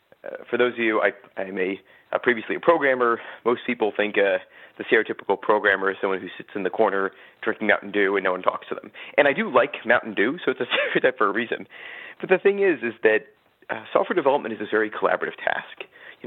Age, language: 30-49, English